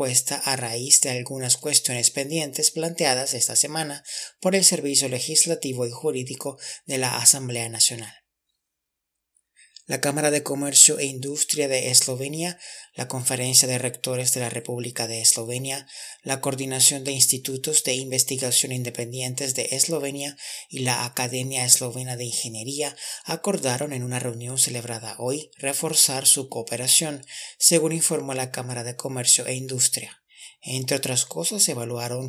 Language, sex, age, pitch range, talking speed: Spanish, male, 30-49, 125-145 Hz, 135 wpm